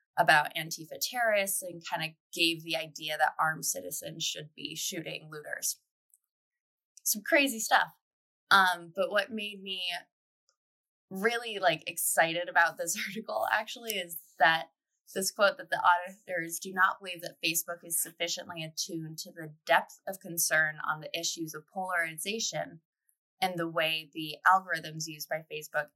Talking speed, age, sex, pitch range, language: 150 wpm, 20-39, female, 155-185 Hz, English